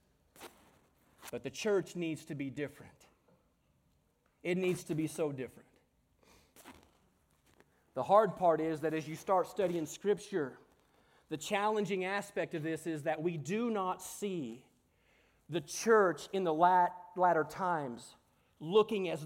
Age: 30-49